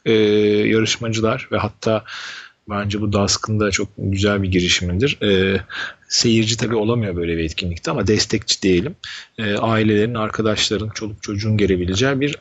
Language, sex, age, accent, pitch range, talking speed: Turkish, male, 40-59, native, 90-115 Hz, 140 wpm